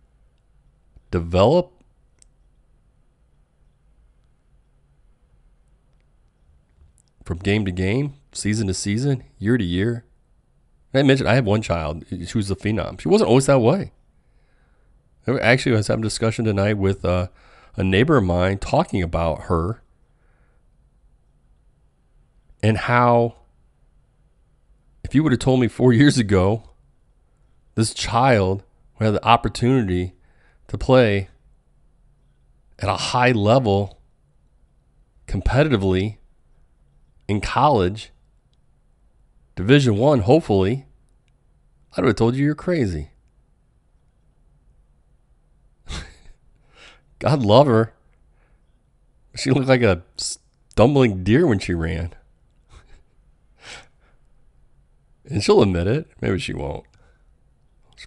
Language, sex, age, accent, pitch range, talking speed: English, male, 30-49, American, 90-125 Hz, 100 wpm